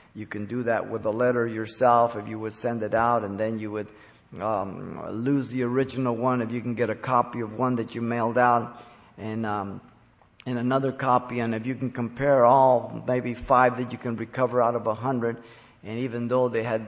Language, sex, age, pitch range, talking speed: English, male, 50-69, 110-125 Hz, 215 wpm